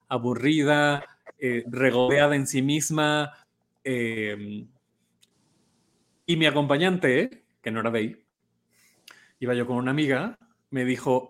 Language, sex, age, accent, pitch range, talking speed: Spanish, male, 30-49, Mexican, 120-155 Hz, 115 wpm